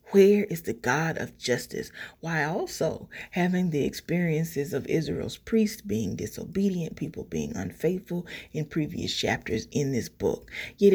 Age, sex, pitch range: 30-49, female, 150-190 Hz